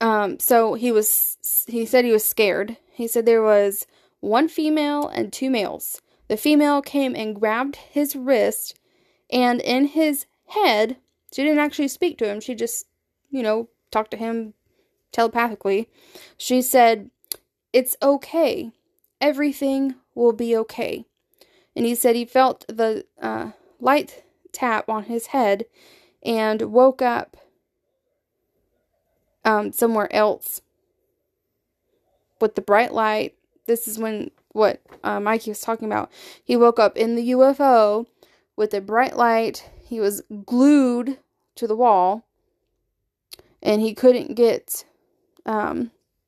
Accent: American